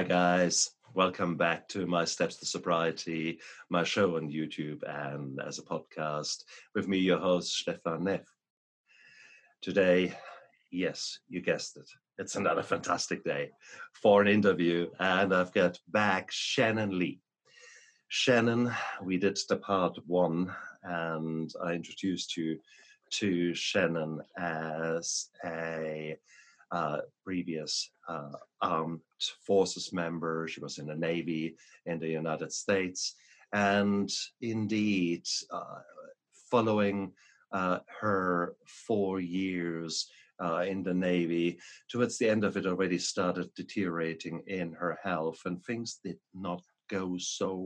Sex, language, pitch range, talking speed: male, English, 80-95 Hz, 125 wpm